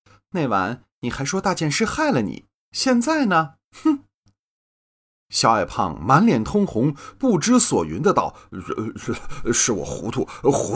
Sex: male